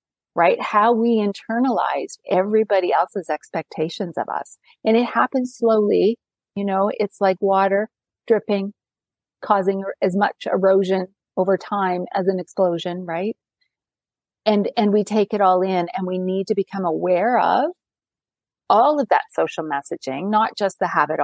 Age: 40-59